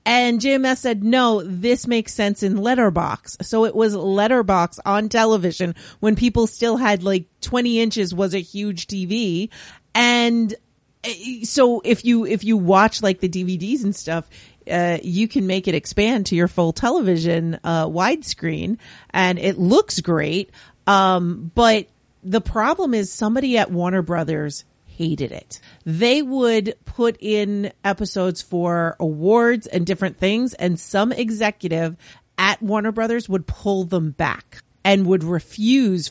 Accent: American